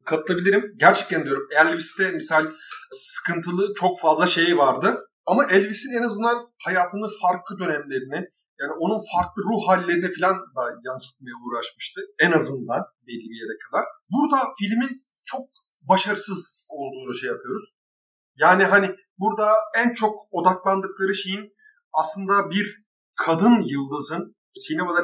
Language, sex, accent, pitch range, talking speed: Turkish, male, native, 160-220 Hz, 115 wpm